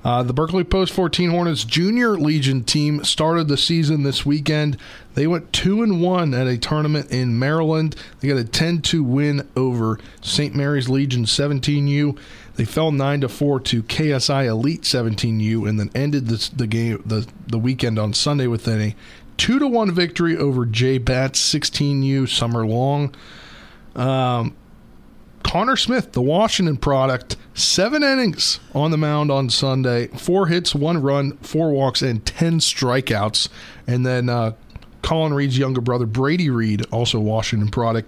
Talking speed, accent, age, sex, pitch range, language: 155 wpm, American, 40-59, male, 120-150 Hz, English